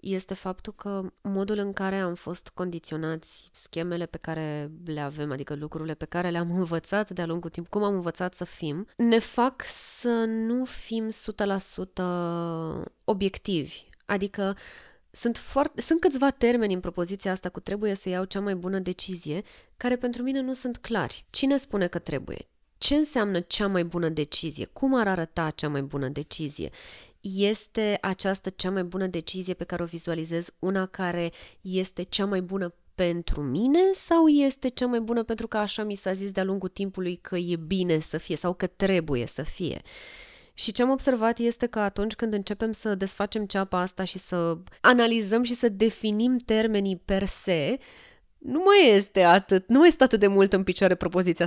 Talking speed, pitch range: 175 wpm, 170-220 Hz